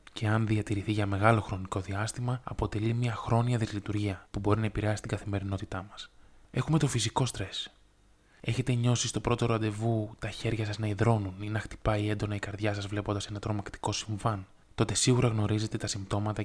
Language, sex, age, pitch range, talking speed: Greek, male, 20-39, 100-115 Hz, 175 wpm